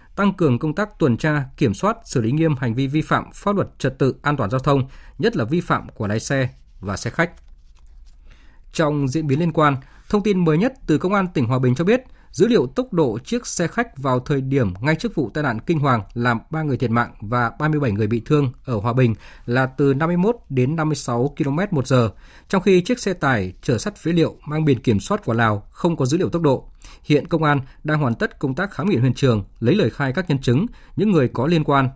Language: Vietnamese